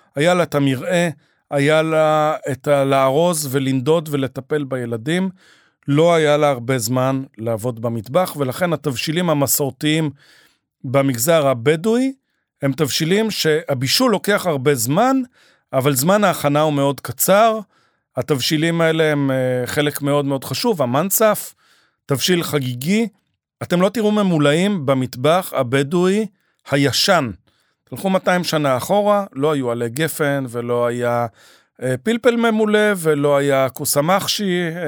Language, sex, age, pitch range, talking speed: Hebrew, male, 40-59, 135-185 Hz, 120 wpm